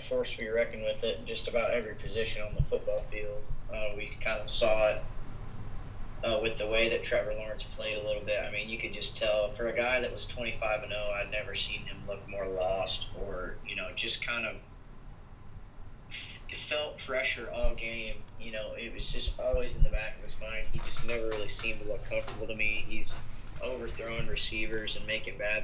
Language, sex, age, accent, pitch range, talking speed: English, male, 20-39, American, 105-125 Hz, 210 wpm